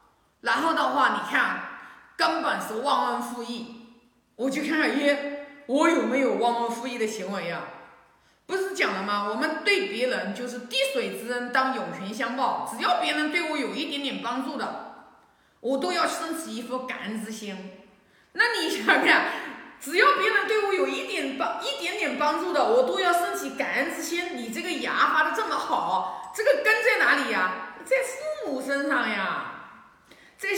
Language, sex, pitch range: Chinese, female, 245-350 Hz